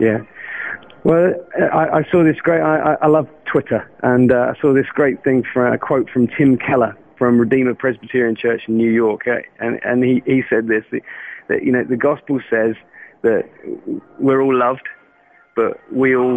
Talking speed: 185 wpm